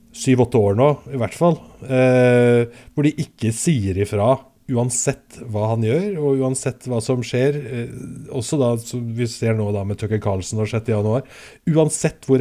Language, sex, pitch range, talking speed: English, male, 110-130 Hz, 180 wpm